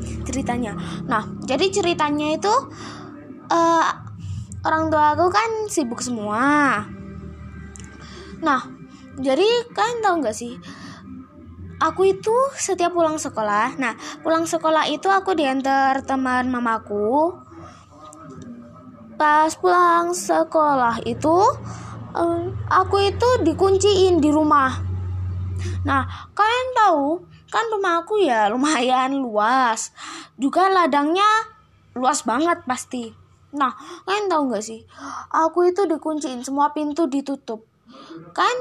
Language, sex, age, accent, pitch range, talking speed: Indonesian, female, 10-29, native, 240-355 Hz, 105 wpm